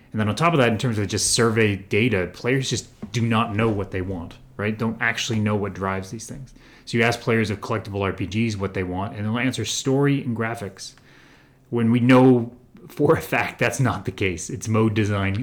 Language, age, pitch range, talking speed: English, 30-49, 95-120 Hz, 220 wpm